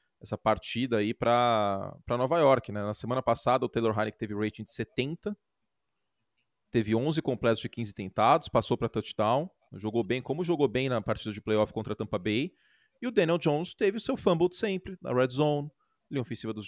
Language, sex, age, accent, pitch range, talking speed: Portuguese, male, 30-49, Brazilian, 115-185 Hz, 200 wpm